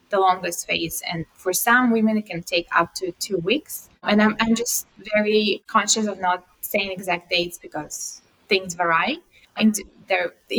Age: 20-39